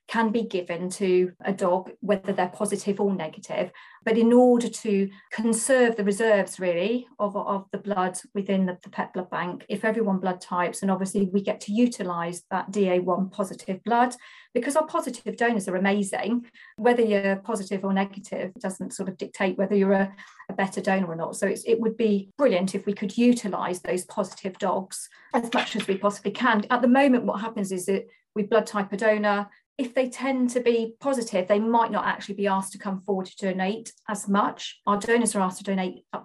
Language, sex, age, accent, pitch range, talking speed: English, female, 40-59, British, 185-215 Hz, 205 wpm